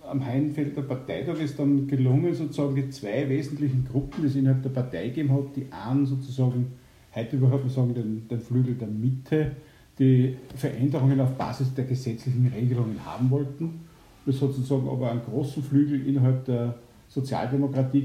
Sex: male